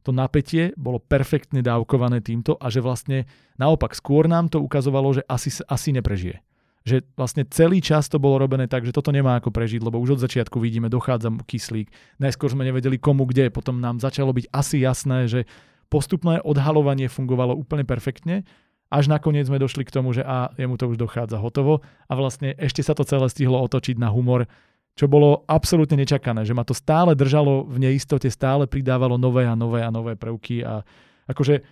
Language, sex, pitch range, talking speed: Slovak, male, 125-145 Hz, 185 wpm